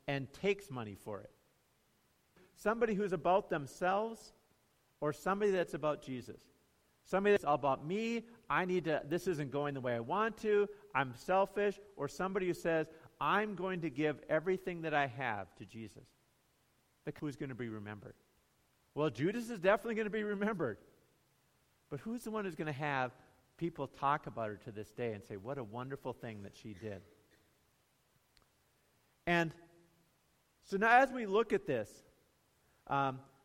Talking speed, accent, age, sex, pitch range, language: 165 wpm, American, 50-69, male, 135-205 Hz, English